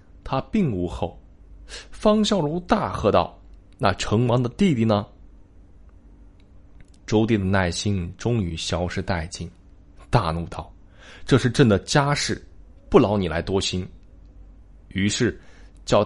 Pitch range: 85-120 Hz